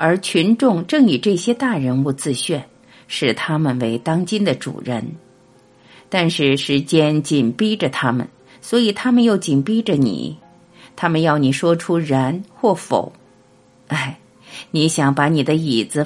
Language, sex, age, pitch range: Chinese, female, 50-69, 135-190 Hz